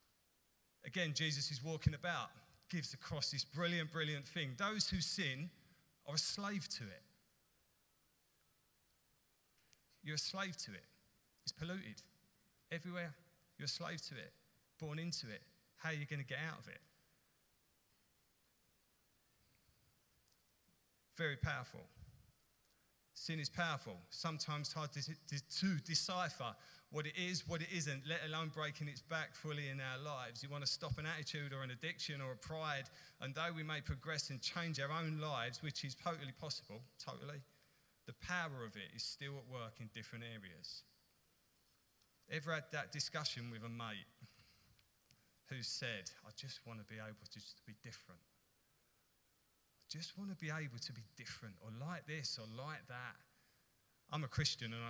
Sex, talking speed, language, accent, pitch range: male, 160 wpm, English, British, 125-160 Hz